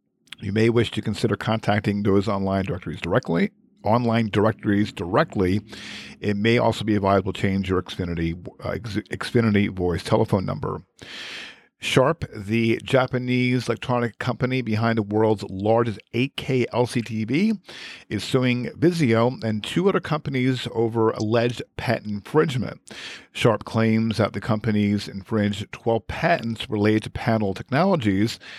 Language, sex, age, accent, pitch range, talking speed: English, male, 50-69, American, 105-125 Hz, 130 wpm